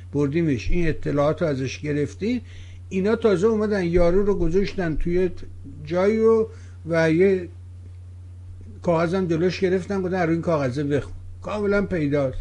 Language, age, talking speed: Persian, 60-79, 100 wpm